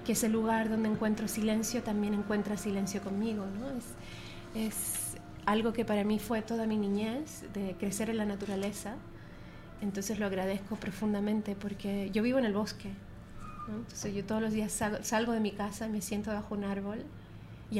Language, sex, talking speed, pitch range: Spanish, female, 180 wpm, 205-245 Hz